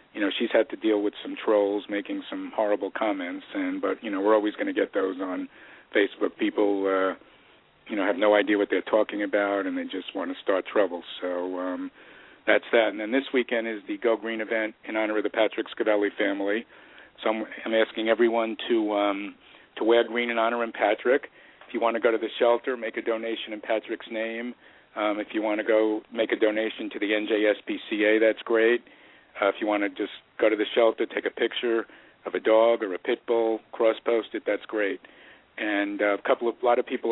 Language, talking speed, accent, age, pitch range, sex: English, 225 wpm, American, 50-69, 105-115 Hz, male